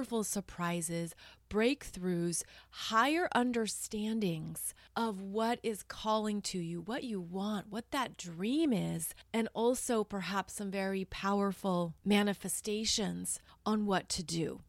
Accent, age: American, 30-49